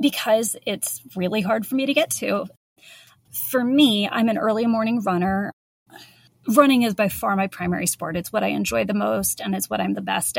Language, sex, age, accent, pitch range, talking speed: English, female, 30-49, American, 195-245 Hz, 200 wpm